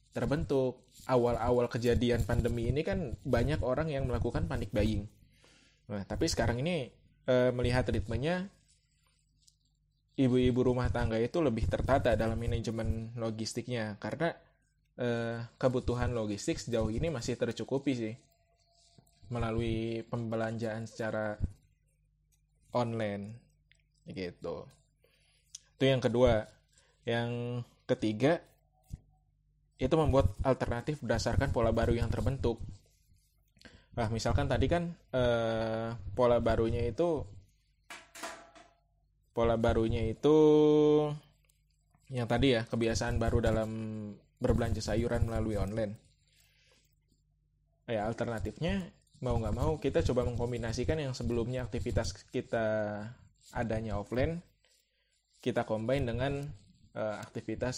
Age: 20-39